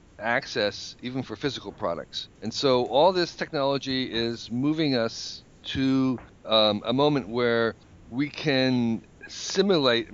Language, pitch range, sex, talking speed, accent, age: English, 105-135 Hz, male, 125 wpm, American, 50-69